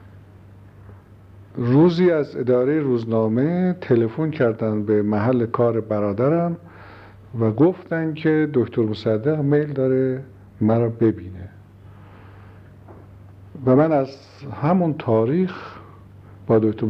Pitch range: 105-145 Hz